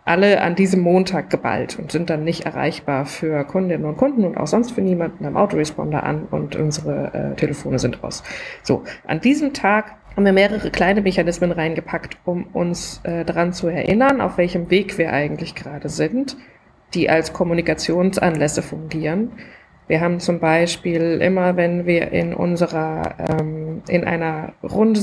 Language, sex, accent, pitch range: German, female, German, 160-195 Hz